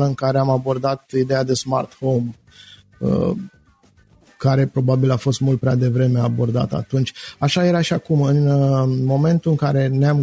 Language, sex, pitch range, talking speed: Romanian, male, 125-145 Hz, 155 wpm